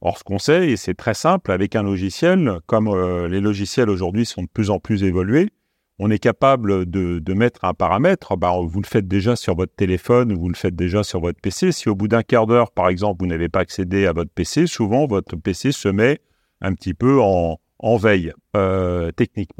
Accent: French